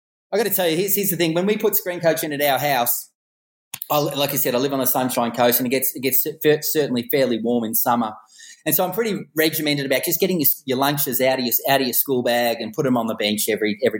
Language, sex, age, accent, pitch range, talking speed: English, male, 30-49, Australian, 135-180 Hz, 285 wpm